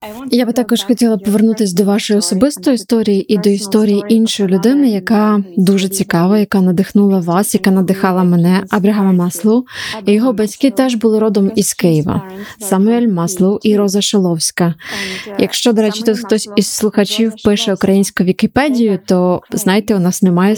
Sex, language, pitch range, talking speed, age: female, Ukrainian, 190-220 Hz, 150 wpm, 20-39